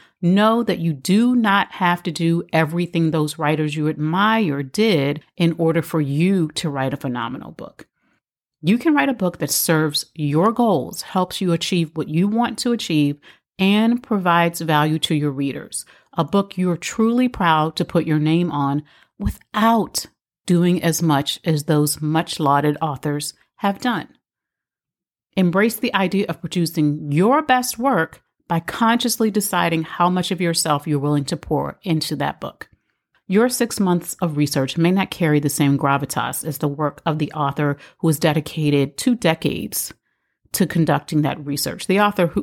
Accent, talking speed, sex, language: American, 165 wpm, female, English